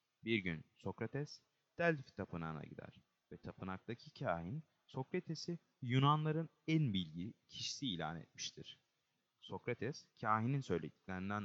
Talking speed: 100 wpm